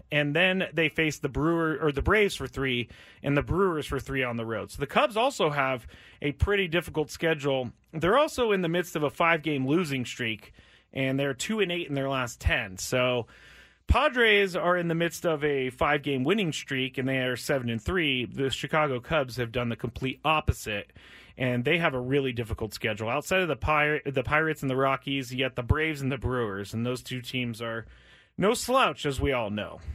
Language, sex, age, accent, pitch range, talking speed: English, male, 30-49, American, 125-165 Hz, 210 wpm